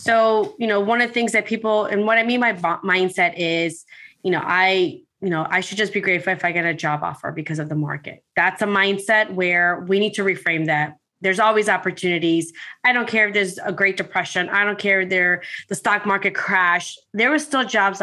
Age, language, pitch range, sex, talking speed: 20-39, English, 185-230 Hz, female, 225 wpm